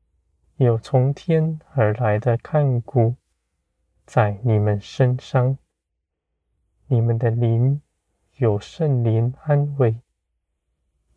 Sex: male